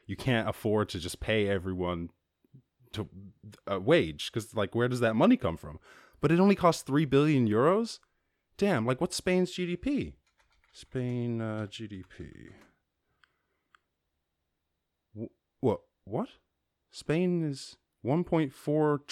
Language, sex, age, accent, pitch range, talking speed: English, male, 20-39, American, 90-135 Hz, 120 wpm